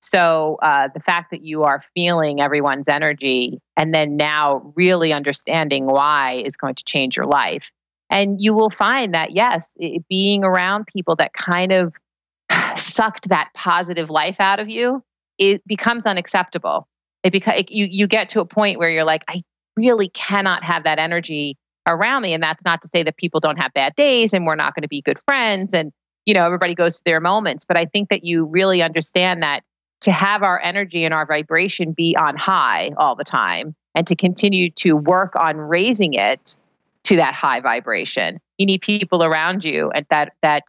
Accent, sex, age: American, female, 30-49